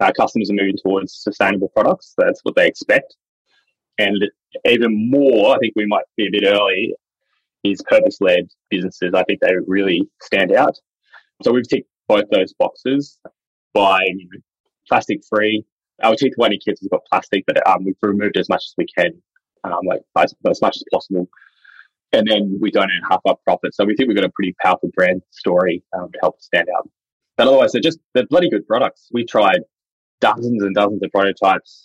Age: 20-39